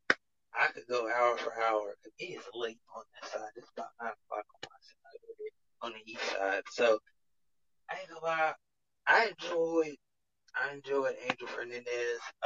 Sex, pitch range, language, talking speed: male, 105-140 Hz, English, 145 wpm